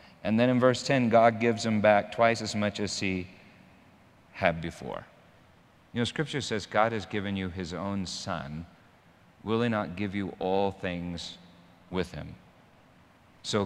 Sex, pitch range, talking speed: male, 85-105 Hz, 165 wpm